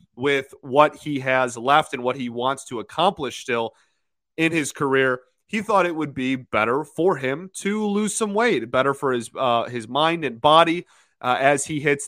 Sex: male